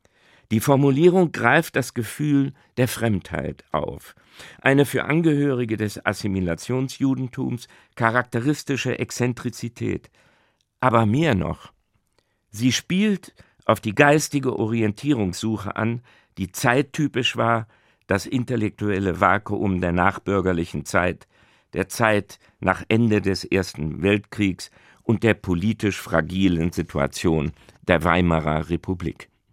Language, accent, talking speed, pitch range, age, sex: German, German, 100 wpm, 90-120 Hz, 50-69, male